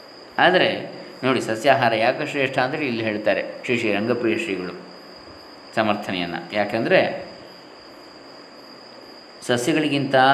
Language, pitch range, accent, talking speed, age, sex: Kannada, 105-130 Hz, native, 80 wpm, 20-39, male